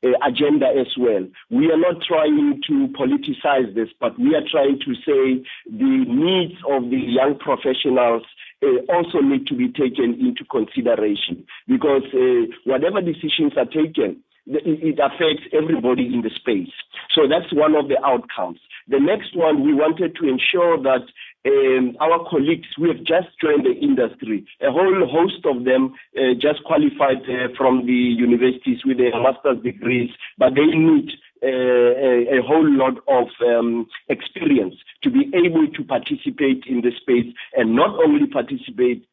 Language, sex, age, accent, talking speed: English, male, 50-69, South African, 160 wpm